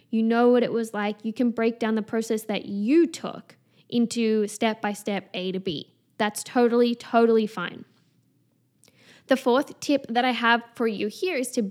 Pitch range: 215-255 Hz